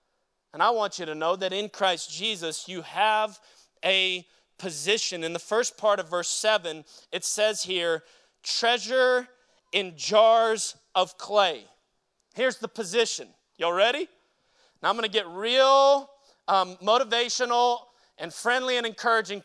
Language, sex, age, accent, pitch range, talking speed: English, male, 30-49, American, 185-260 Hz, 140 wpm